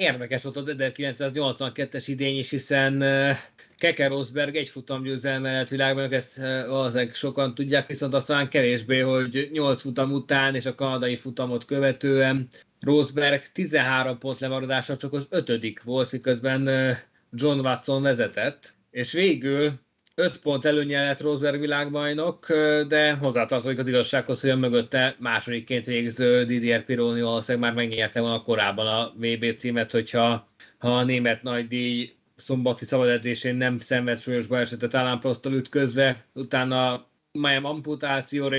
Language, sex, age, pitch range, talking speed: Hungarian, male, 20-39, 125-140 Hz, 130 wpm